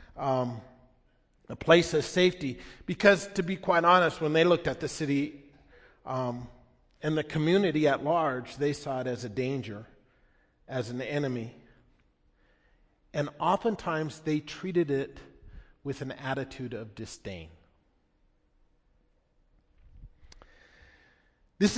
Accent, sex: American, male